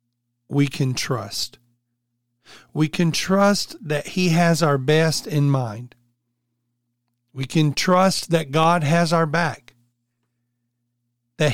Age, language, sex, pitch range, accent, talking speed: 40-59, English, male, 120-160 Hz, American, 115 wpm